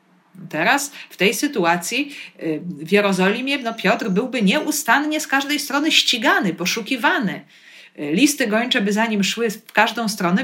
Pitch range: 170-230 Hz